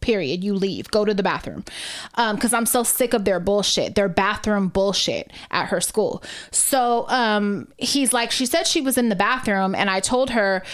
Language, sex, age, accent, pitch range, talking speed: English, female, 20-39, American, 195-240 Hz, 200 wpm